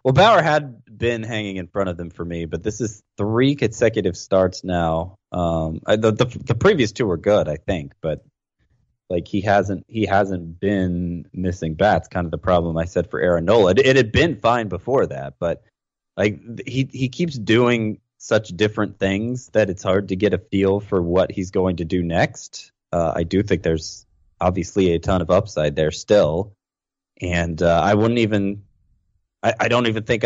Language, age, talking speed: English, 20-39, 195 wpm